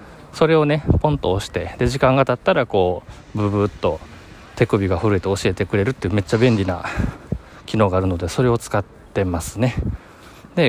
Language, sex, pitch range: Japanese, male, 90-120 Hz